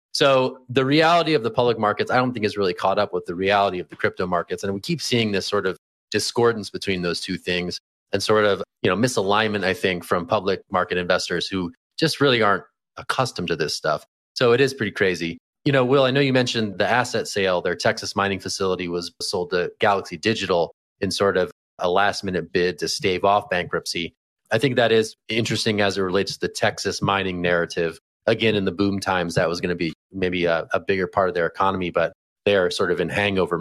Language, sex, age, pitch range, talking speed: English, male, 30-49, 90-115 Hz, 225 wpm